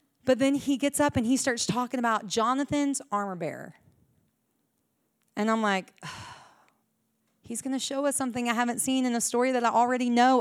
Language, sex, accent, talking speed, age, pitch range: English, female, American, 185 wpm, 40-59, 190-265 Hz